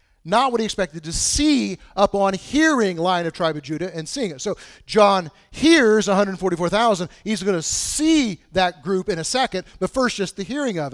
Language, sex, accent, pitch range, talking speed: English, male, American, 145-185 Hz, 190 wpm